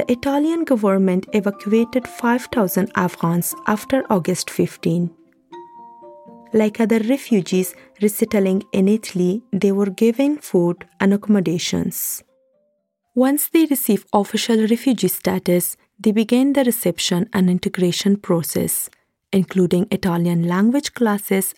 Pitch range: 180-240 Hz